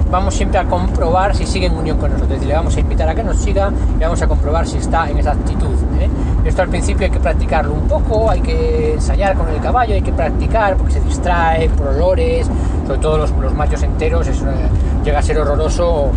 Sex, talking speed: male, 230 wpm